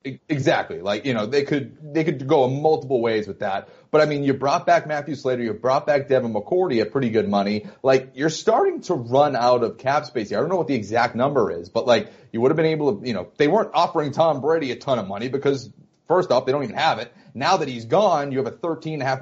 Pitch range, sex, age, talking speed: 125-155 Hz, male, 30-49, 265 wpm